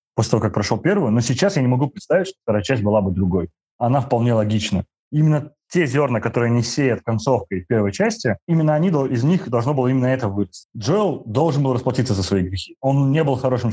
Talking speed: 210 wpm